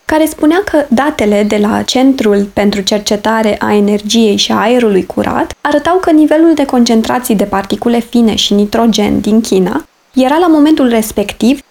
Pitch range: 210-275 Hz